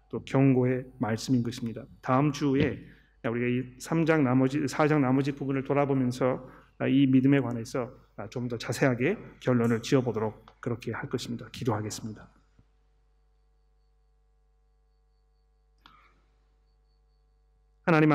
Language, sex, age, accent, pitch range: Korean, male, 40-59, native, 120-145 Hz